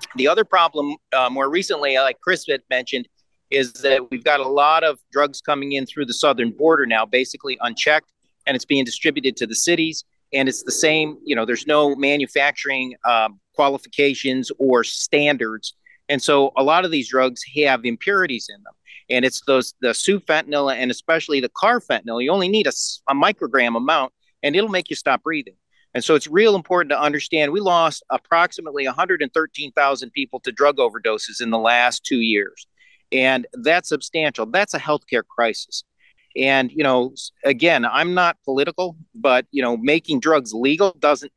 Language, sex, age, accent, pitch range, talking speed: English, male, 40-59, American, 125-155 Hz, 180 wpm